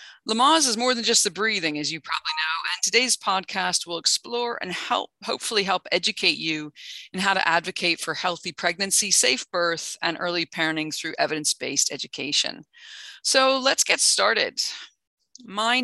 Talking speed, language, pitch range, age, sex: 160 wpm, English, 165-210 Hz, 50-69, female